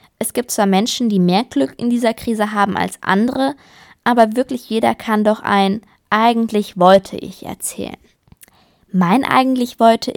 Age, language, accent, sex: 20-39, German, German, female